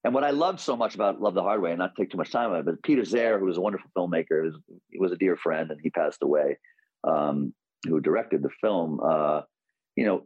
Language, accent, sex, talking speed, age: English, American, male, 265 wpm, 40-59